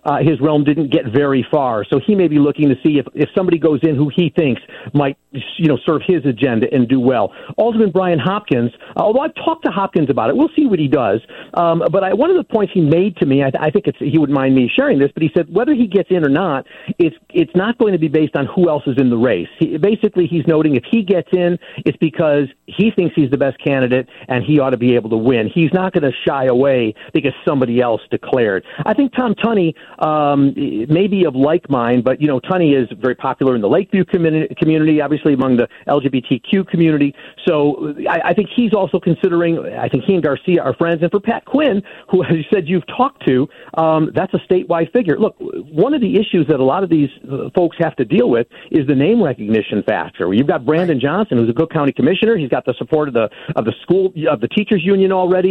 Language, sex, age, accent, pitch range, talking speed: English, male, 50-69, American, 140-190 Hz, 240 wpm